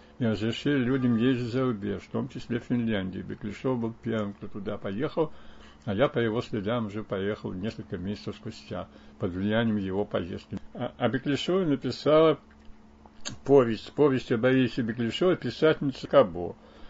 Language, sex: Russian, male